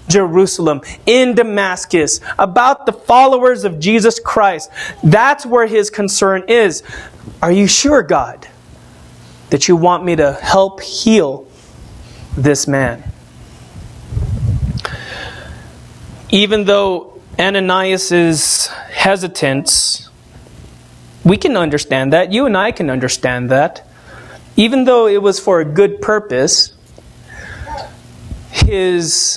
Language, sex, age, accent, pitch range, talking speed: English, male, 30-49, American, 170-255 Hz, 100 wpm